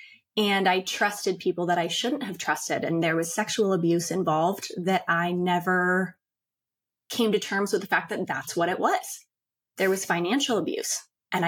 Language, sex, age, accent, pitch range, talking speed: English, female, 20-39, American, 175-205 Hz, 180 wpm